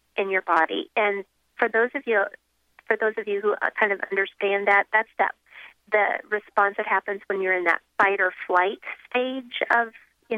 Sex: female